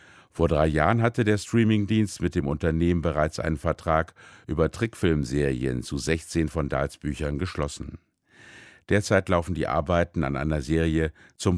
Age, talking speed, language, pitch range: 60-79, 145 wpm, German, 75-95 Hz